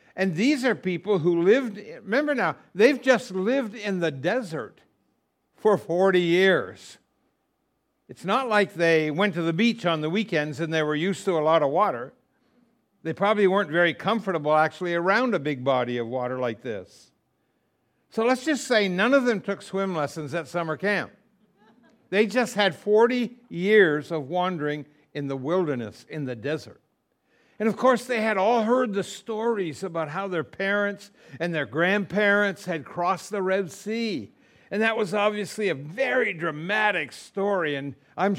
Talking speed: 170 wpm